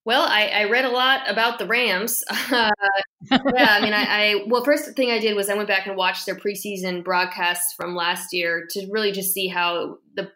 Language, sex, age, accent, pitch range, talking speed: English, female, 20-39, American, 180-205 Hz, 220 wpm